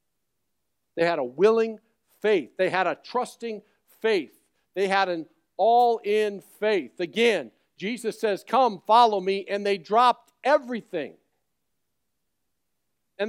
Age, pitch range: 50-69, 185-240 Hz